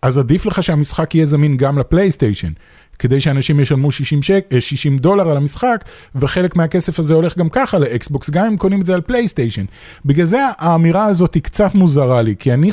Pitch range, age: 125-175 Hz, 30-49